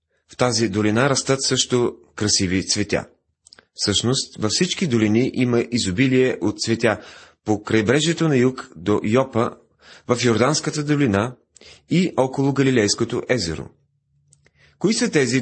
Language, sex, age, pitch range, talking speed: Bulgarian, male, 30-49, 105-135 Hz, 120 wpm